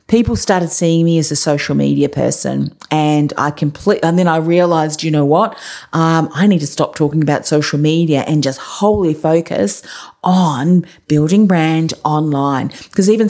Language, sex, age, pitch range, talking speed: English, female, 40-59, 155-195 Hz, 170 wpm